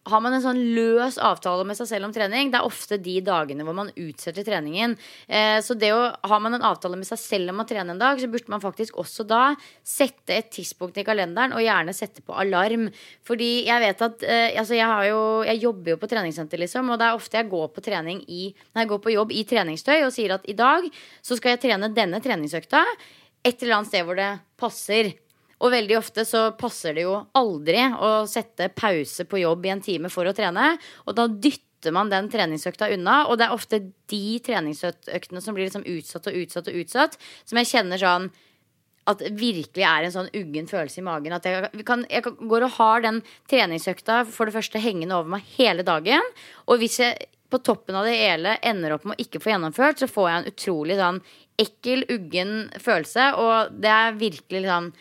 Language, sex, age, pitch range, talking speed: English, female, 20-39, 185-235 Hz, 210 wpm